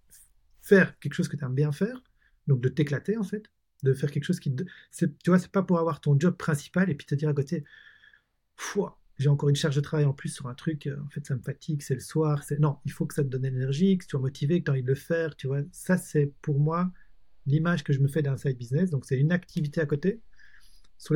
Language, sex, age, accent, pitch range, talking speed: French, male, 40-59, French, 145-180 Hz, 270 wpm